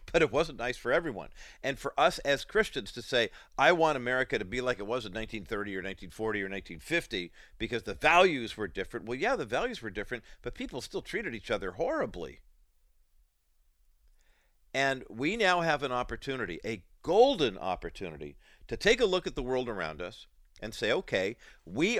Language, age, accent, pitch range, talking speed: English, 50-69, American, 90-130 Hz, 185 wpm